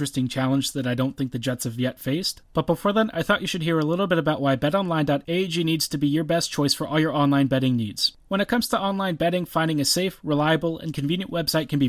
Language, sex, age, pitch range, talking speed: English, male, 30-49, 140-175 Hz, 260 wpm